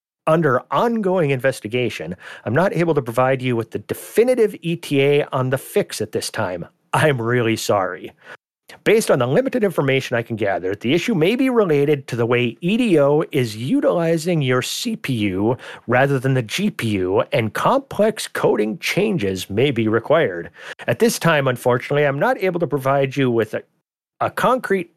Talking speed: 165 wpm